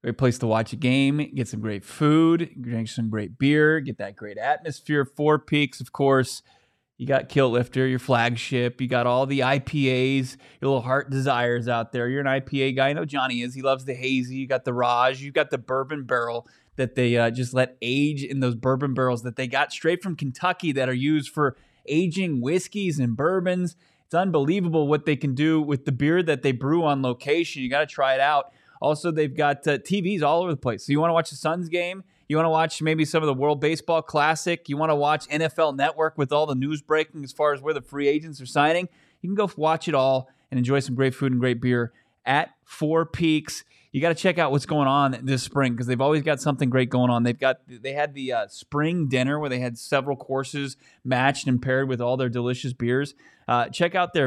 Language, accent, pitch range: English, American, 130-155 Hz